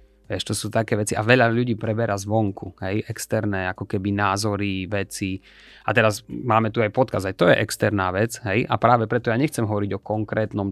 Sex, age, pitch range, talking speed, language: male, 30-49, 105-120 Hz, 195 wpm, Slovak